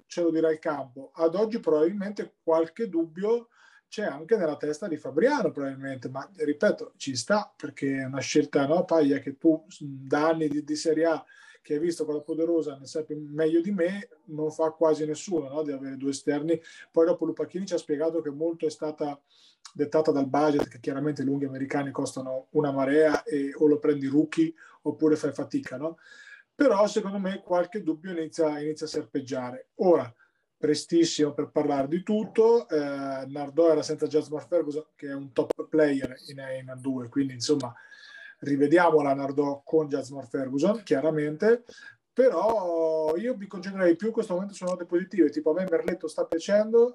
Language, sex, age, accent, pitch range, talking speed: Italian, male, 30-49, native, 150-175 Hz, 175 wpm